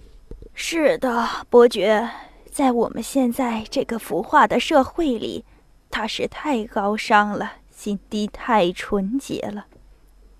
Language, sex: Chinese, female